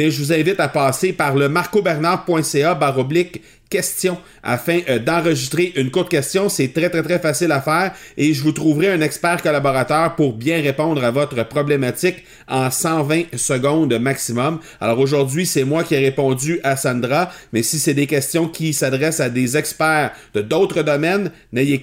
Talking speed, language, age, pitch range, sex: 175 wpm, French, 40-59, 140-185 Hz, male